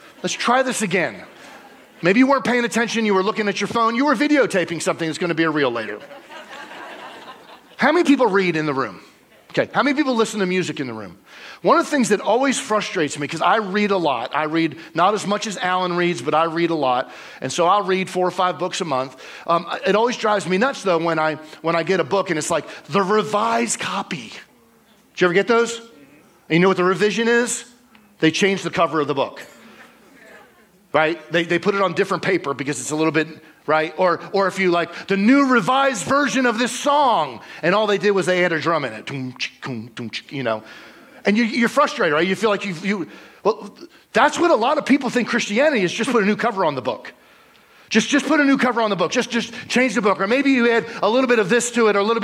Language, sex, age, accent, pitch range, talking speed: English, male, 40-59, American, 170-235 Hz, 245 wpm